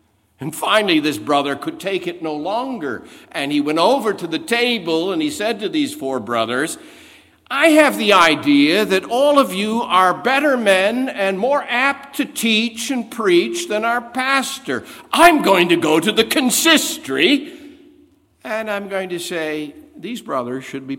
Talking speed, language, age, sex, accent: 170 wpm, English, 60-79, male, American